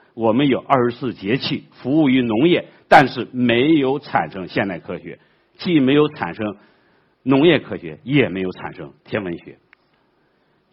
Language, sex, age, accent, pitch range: Chinese, male, 50-69, native, 105-150 Hz